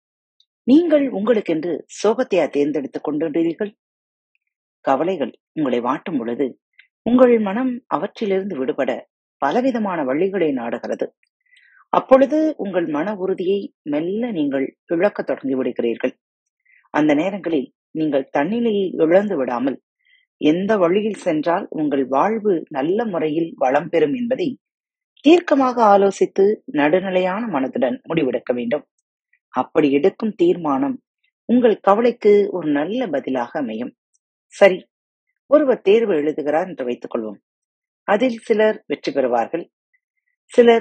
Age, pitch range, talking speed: 30-49, 165-270 Hz, 100 wpm